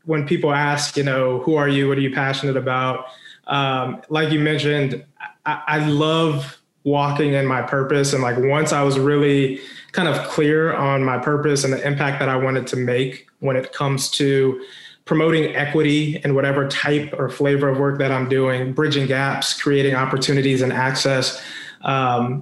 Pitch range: 130-145 Hz